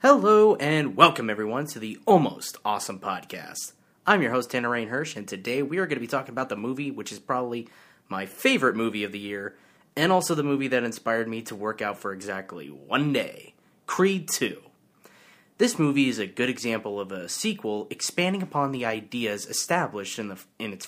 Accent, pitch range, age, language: American, 105-145 Hz, 30-49, English